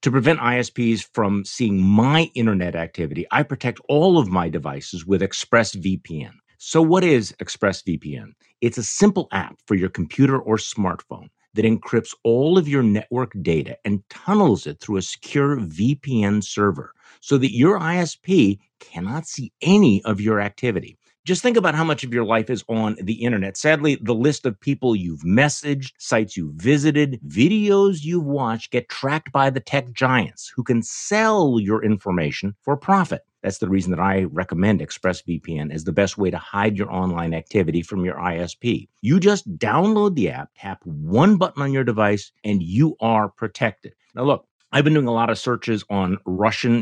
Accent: American